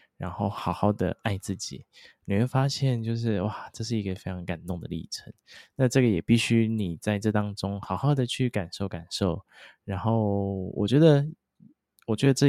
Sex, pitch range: male, 100-130 Hz